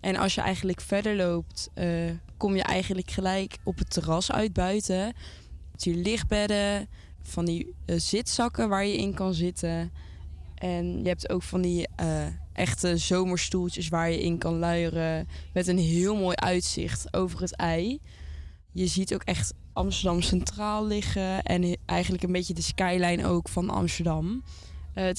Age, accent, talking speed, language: 20-39, Dutch, 165 wpm, Dutch